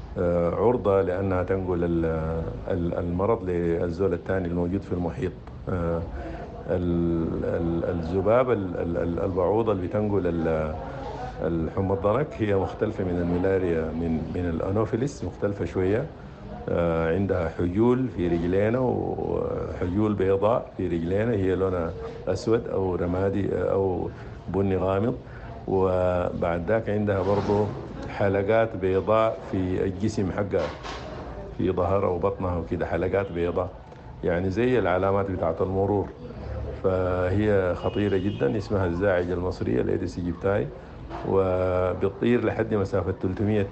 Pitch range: 85-100 Hz